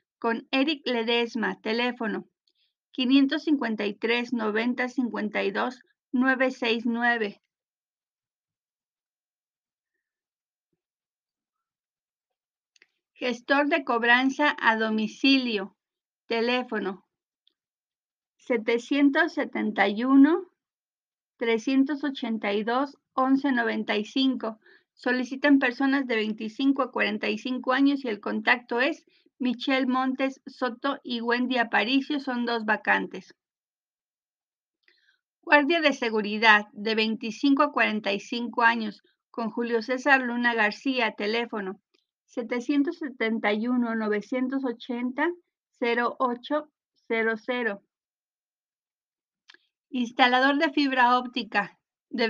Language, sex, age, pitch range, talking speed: Spanish, female, 40-59, 225-275 Hz, 60 wpm